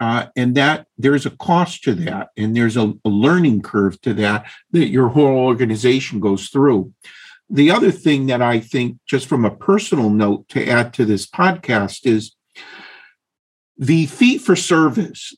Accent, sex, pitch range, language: American, male, 115-160 Hz, English